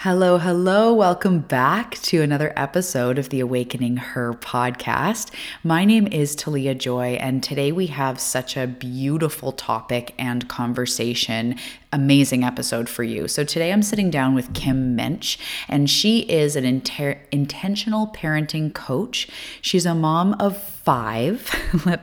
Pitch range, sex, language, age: 125-155 Hz, female, English, 20-39